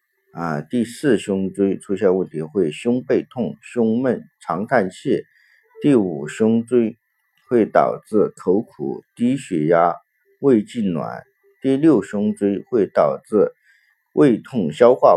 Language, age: Chinese, 50-69